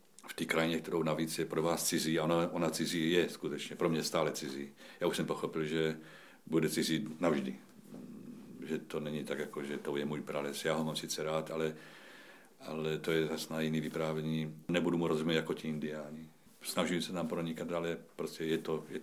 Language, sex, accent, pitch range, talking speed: Czech, male, native, 75-80 Hz, 205 wpm